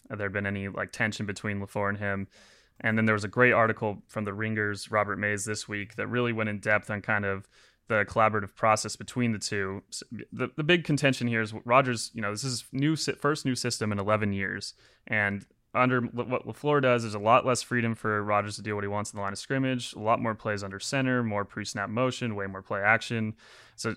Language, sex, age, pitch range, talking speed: English, male, 20-39, 100-115 Hz, 235 wpm